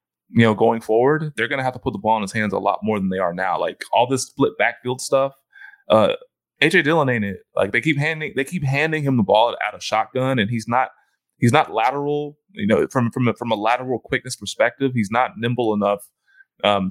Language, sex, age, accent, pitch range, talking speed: English, male, 20-39, American, 105-135 Hz, 235 wpm